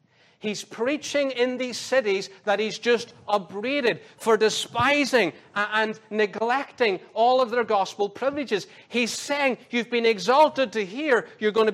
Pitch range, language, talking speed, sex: 155-220 Hz, English, 145 wpm, male